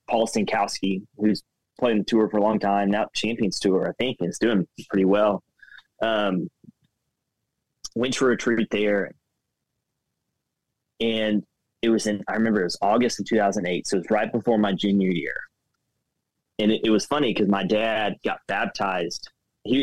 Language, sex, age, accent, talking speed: English, male, 20-39, American, 165 wpm